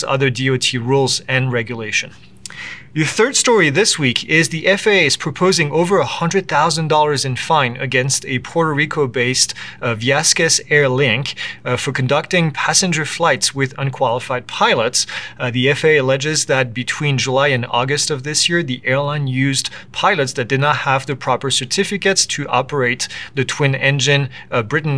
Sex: male